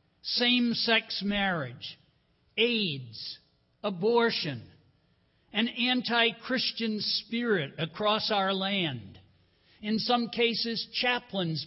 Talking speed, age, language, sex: 70 wpm, 60-79, English, male